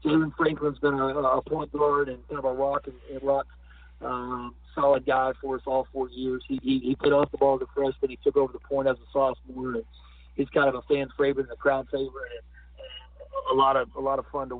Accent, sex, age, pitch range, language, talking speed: American, male, 40-59, 130-145 Hz, English, 255 wpm